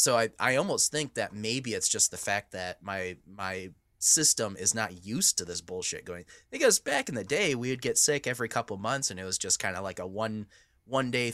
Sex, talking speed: male, 240 wpm